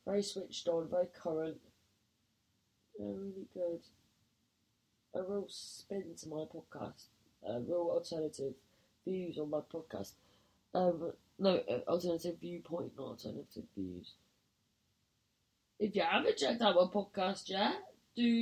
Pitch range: 160-220 Hz